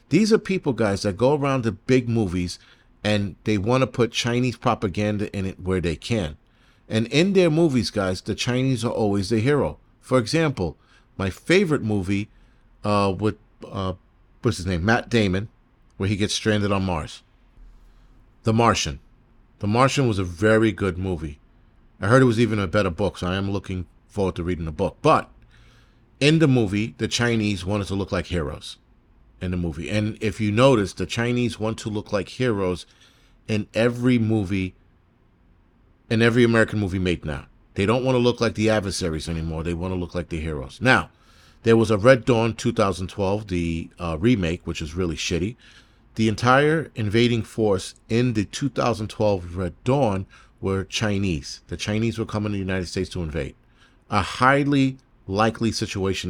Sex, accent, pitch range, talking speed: male, American, 95-120 Hz, 180 wpm